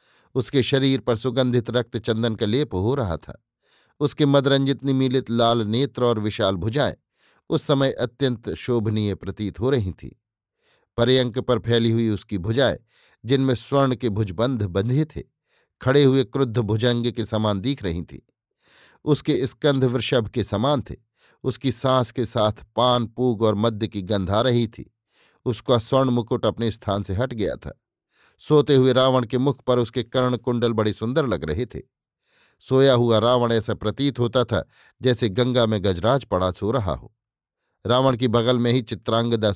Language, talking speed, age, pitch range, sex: Hindi, 165 wpm, 50-69, 110-130 Hz, male